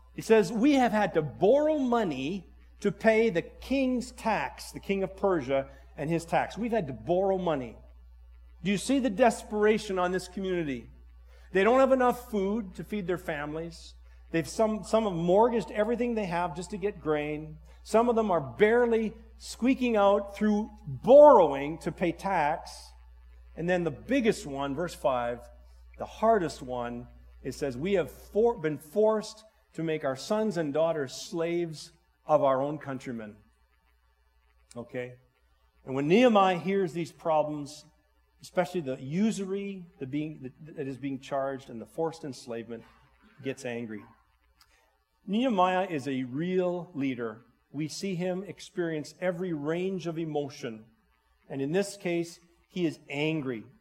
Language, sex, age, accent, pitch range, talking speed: English, male, 50-69, American, 135-205 Hz, 150 wpm